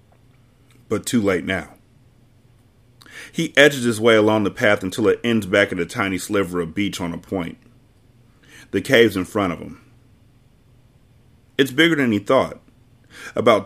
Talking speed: 160 wpm